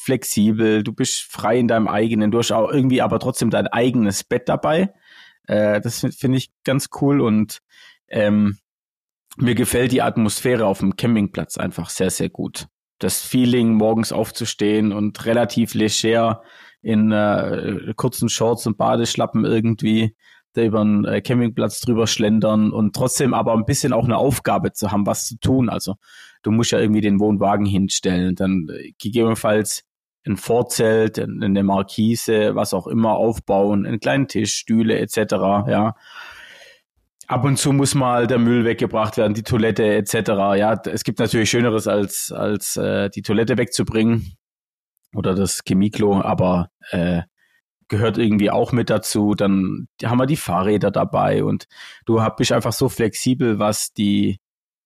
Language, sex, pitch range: German, male, 105-120 Hz